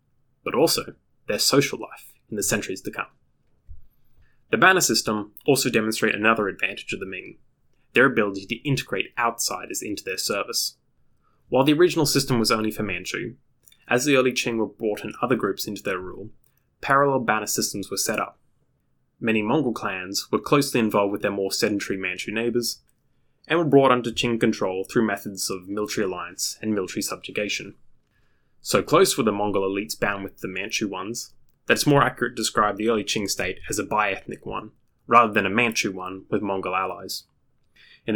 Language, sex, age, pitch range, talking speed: English, male, 10-29, 100-120 Hz, 180 wpm